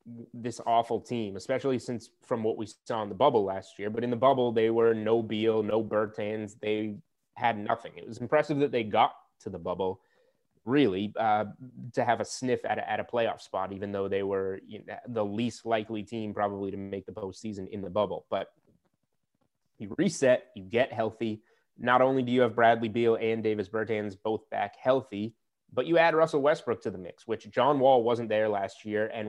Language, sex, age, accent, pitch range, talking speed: English, male, 20-39, American, 105-120 Hz, 200 wpm